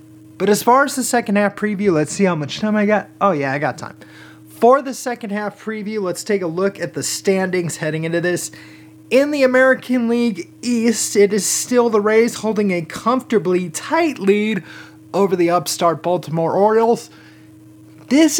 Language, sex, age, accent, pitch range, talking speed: English, male, 30-49, American, 145-210 Hz, 185 wpm